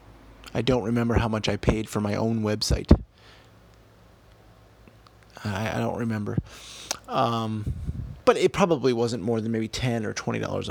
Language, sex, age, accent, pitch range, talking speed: English, male, 30-49, American, 110-150 Hz, 145 wpm